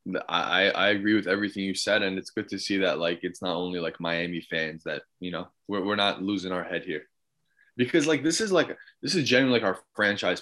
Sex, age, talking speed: male, 20-39, 235 wpm